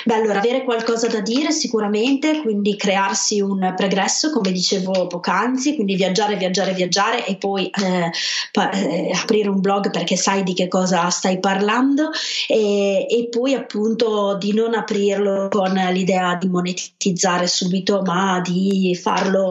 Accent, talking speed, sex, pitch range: native, 145 wpm, female, 190-215 Hz